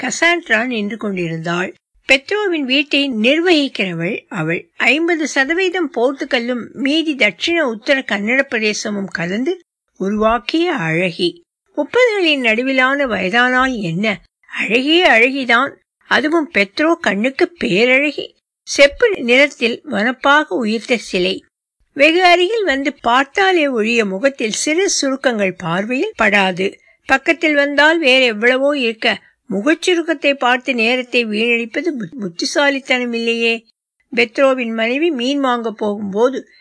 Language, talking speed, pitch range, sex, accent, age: Tamil, 90 wpm, 220-305 Hz, female, native, 60-79